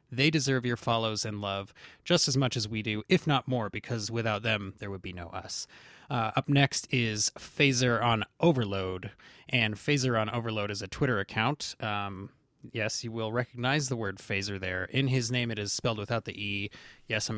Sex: male